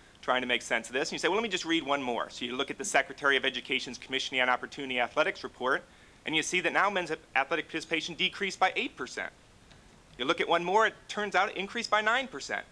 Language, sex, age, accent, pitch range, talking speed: English, male, 30-49, American, 120-175 Hz, 255 wpm